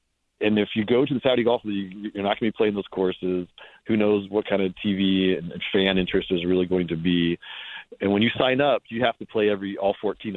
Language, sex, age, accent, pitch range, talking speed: English, male, 40-59, American, 90-110 Hz, 250 wpm